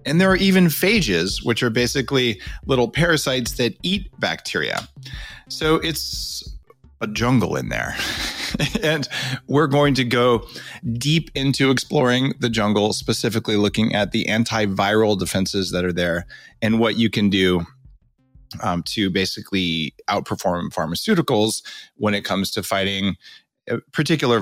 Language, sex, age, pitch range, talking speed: English, male, 30-49, 90-125 Hz, 135 wpm